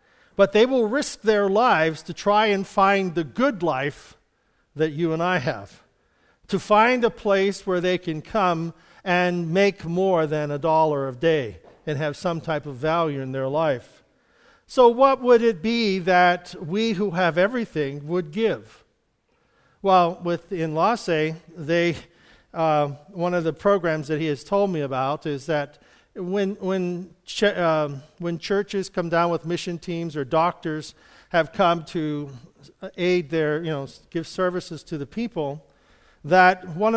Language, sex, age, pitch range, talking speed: English, male, 50-69, 155-190 Hz, 160 wpm